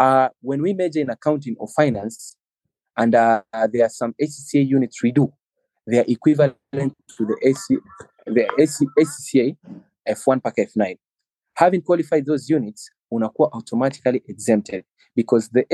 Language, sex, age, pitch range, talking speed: Swahili, male, 30-49, 120-160 Hz, 145 wpm